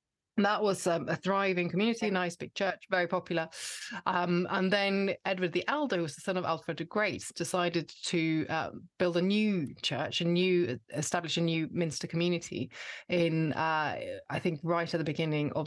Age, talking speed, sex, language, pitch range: 30-49, 190 wpm, female, English, 165-195 Hz